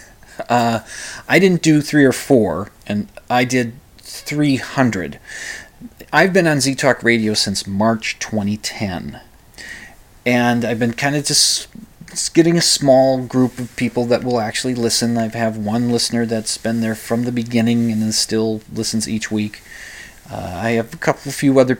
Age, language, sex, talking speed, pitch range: 30-49, English, male, 160 wpm, 110-135 Hz